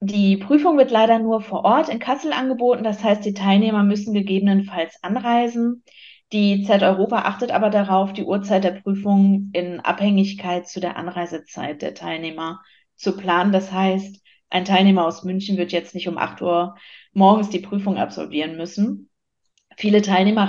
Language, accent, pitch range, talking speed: German, German, 180-210 Hz, 160 wpm